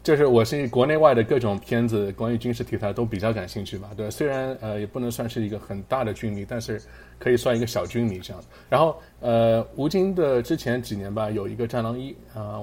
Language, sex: Chinese, male